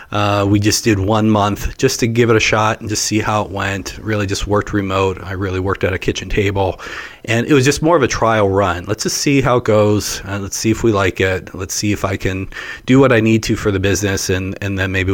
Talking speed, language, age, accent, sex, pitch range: 270 wpm, English, 40-59, American, male, 100-115 Hz